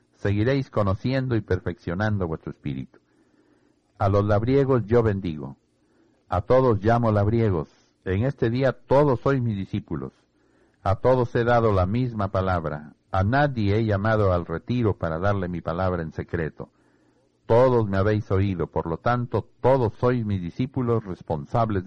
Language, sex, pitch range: Spanish, male, 90-115 Hz